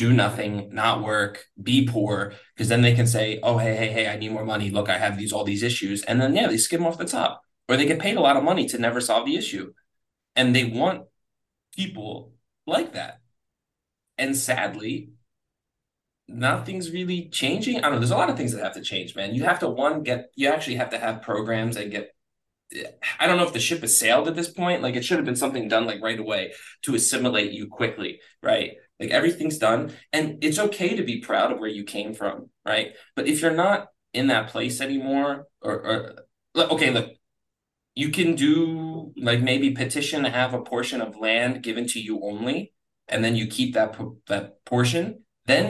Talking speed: 210 wpm